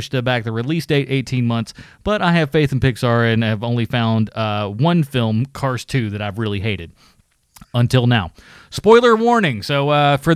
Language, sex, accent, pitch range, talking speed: English, male, American, 120-160 Hz, 190 wpm